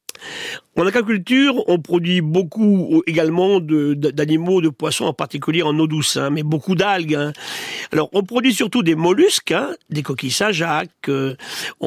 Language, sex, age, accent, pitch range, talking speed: French, male, 50-69, French, 150-200 Hz, 160 wpm